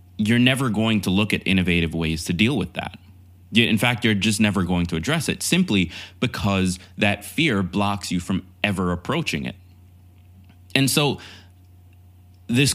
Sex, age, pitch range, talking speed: male, 20-39, 90-110 Hz, 160 wpm